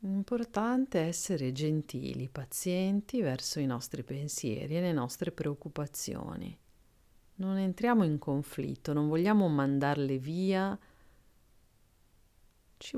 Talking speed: 95 wpm